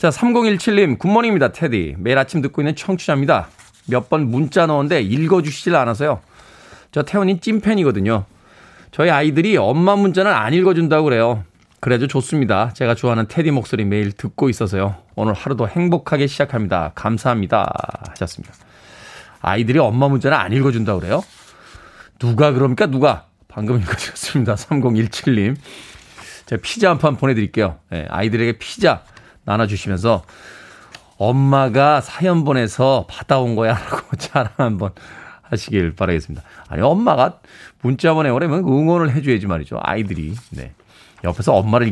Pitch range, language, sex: 110-160 Hz, Korean, male